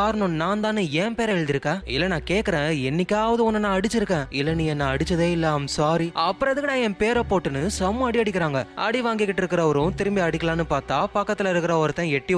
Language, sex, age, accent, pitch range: Tamil, male, 20-39, native, 145-195 Hz